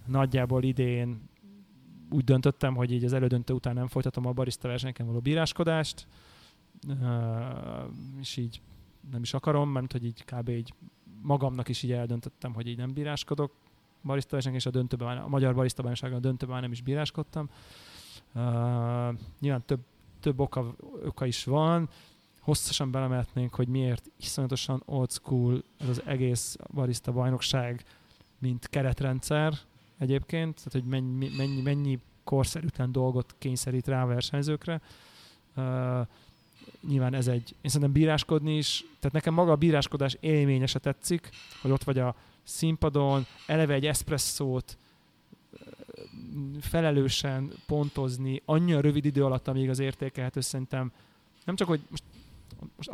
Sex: male